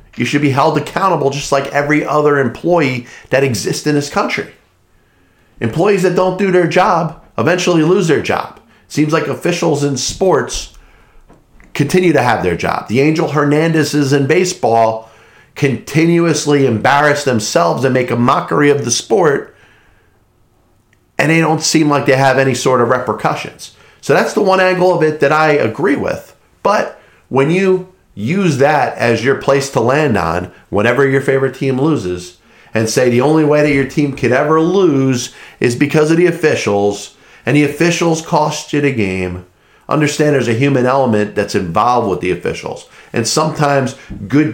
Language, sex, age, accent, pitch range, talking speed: English, male, 40-59, American, 120-155 Hz, 165 wpm